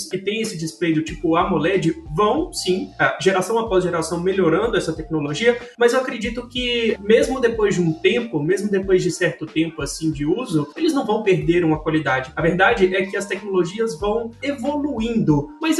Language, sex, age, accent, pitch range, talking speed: Portuguese, male, 20-39, Brazilian, 180-230 Hz, 180 wpm